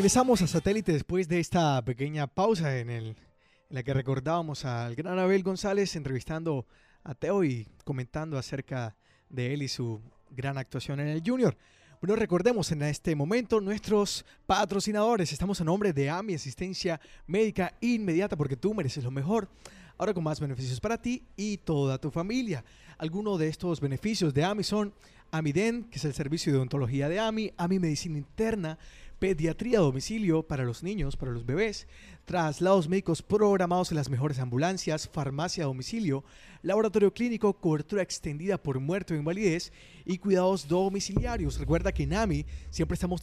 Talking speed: 165 wpm